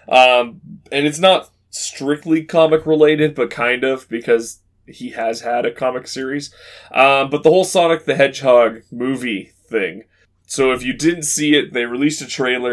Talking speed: 170 wpm